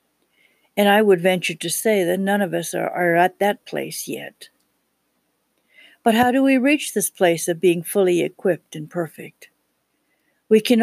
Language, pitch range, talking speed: English, 180-225 Hz, 170 wpm